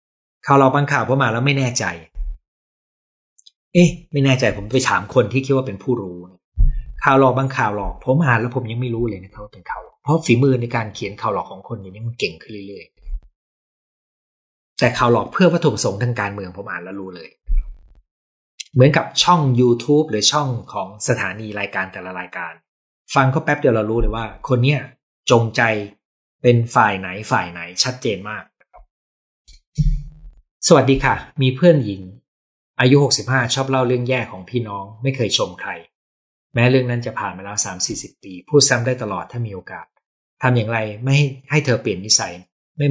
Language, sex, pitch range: Thai, male, 95-135 Hz